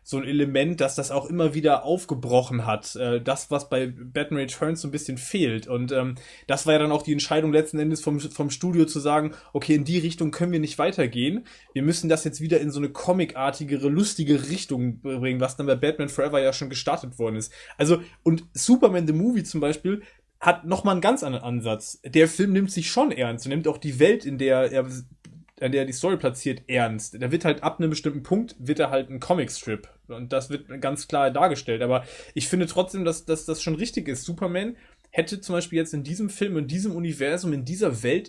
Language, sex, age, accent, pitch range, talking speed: German, male, 20-39, German, 130-165 Hz, 220 wpm